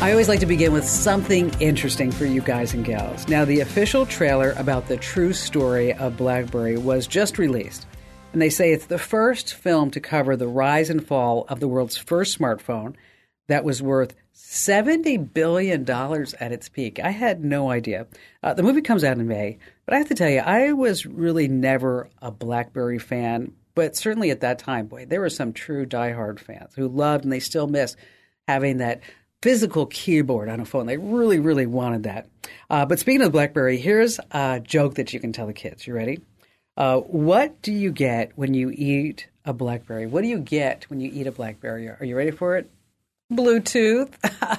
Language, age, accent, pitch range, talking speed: English, 50-69, American, 125-175 Hz, 200 wpm